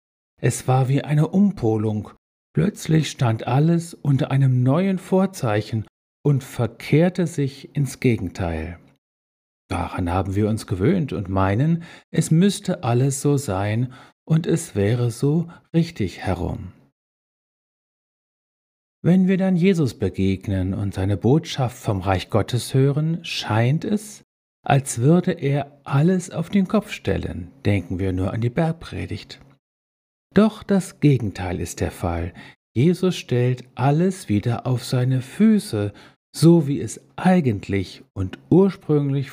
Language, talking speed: German, 125 wpm